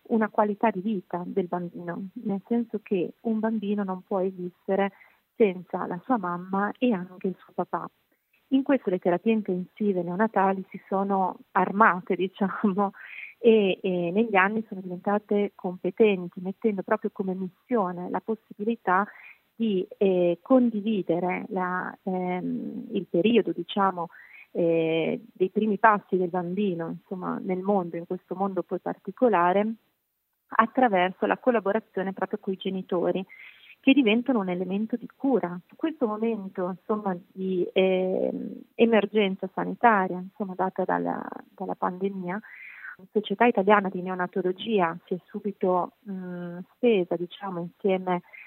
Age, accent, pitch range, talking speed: 30-49, native, 180-220 Hz, 130 wpm